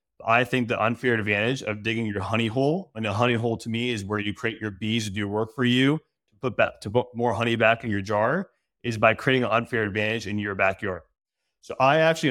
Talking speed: 245 wpm